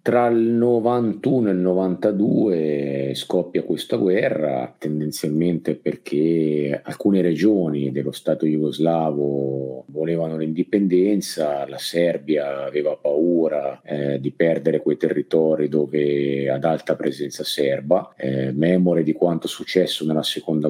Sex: male